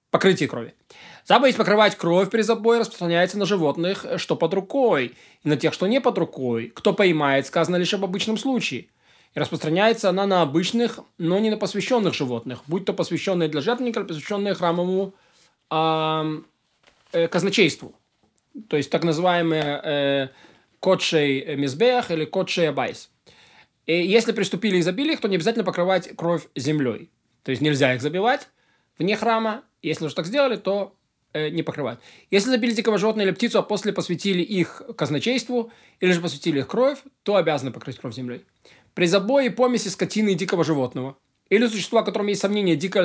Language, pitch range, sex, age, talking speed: Russian, 155-220 Hz, male, 20-39, 160 wpm